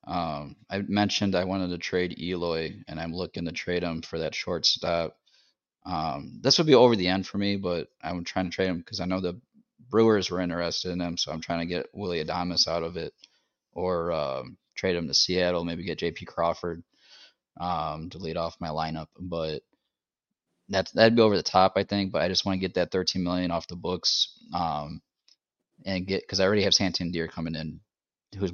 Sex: male